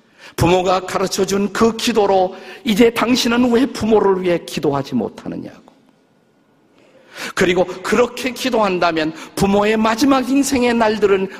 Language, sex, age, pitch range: Korean, male, 50-69, 165-245 Hz